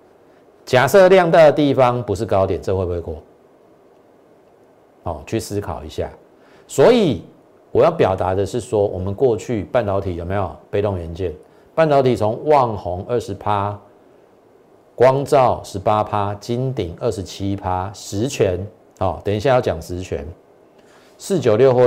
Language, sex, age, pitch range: Chinese, male, 50-69, 90-125 Hz